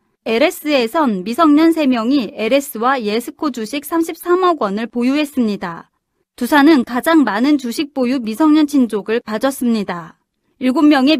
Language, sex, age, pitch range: Korean, female, 30-49, 230-305 Hz